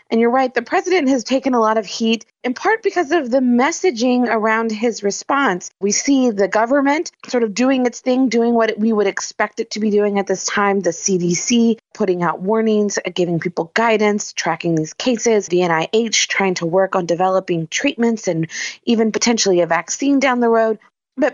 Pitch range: 195-245 Hz